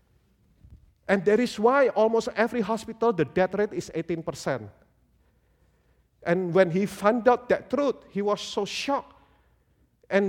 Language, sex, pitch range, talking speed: English, male, 115-185 Hz, 145 wpm